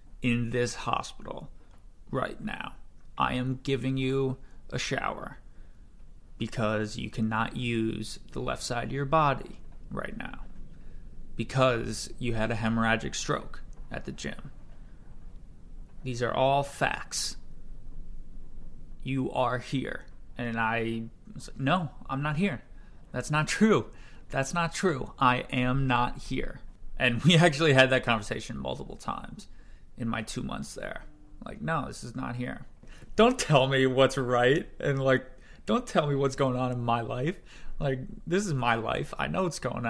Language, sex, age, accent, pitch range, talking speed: English, male, 20-39, American, 115-145 Hz, 150 wpm